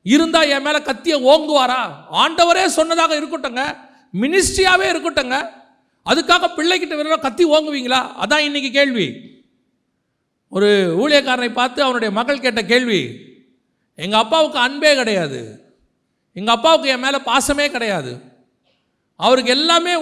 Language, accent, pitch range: Tamil, native, 195-285 Hz